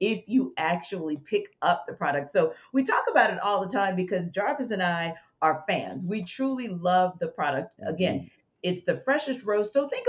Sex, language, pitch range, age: female, English, 180-260 Hz, 40-59